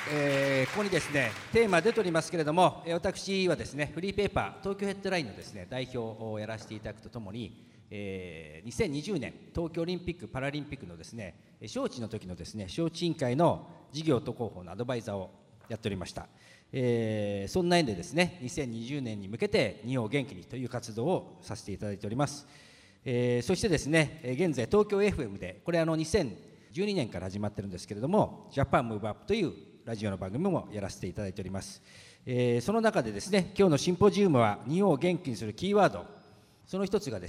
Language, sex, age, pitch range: Japanese, male, 40-59, 105-165 Hz